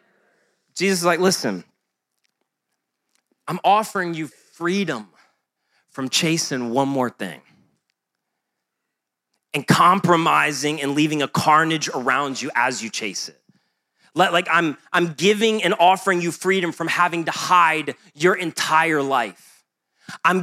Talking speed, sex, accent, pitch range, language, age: 120 wpm, male, American, 185-235 Hz, English, 30-49